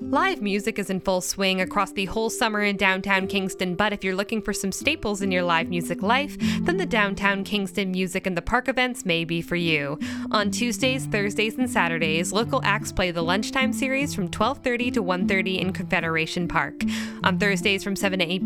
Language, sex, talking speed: English, female, 200 wpm